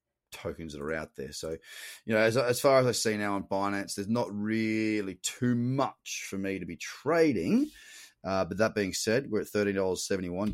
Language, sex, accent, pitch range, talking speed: English, male, Australian, 95-120 Hz, 200 wpm